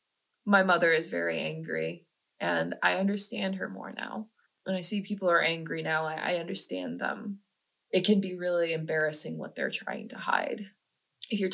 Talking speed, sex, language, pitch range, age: 175 wpm, female, English, 170-215 Hz, 20-39